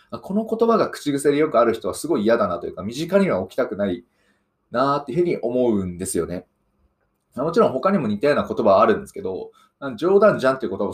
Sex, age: male, 20-39